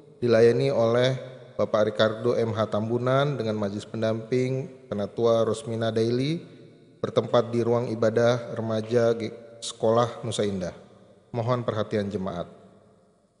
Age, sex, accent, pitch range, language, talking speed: 30-49, male, native, 115-130 Hz, Indonesian, 105 wpm